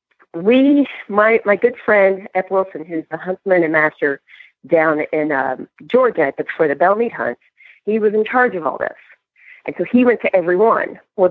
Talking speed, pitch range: 185 wpm, 165-220 Hz